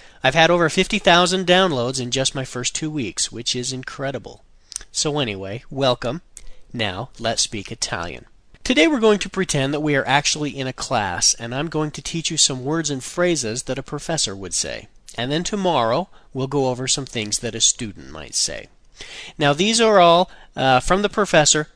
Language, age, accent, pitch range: Italian, 40-59, American, 120-175 Hz